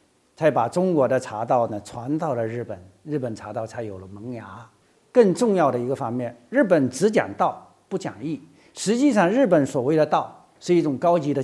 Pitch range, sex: 125-180 Hz, male